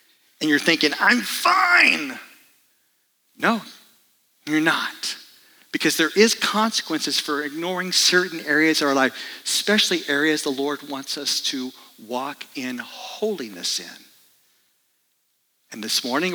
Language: English